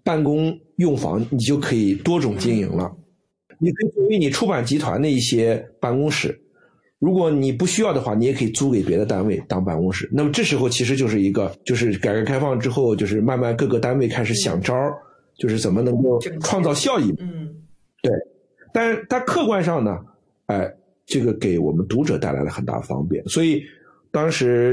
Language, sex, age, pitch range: Chinese, male, 50-69, 120-180 Hz